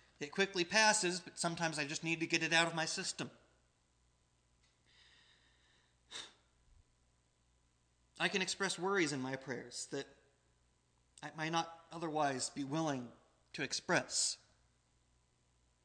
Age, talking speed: 30-49, 115 wpm